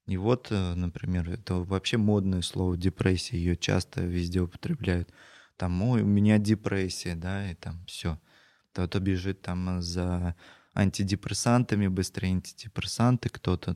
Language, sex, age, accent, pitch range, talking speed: Russian, male, 20-39, native, 90-105 Hz, 120 wpm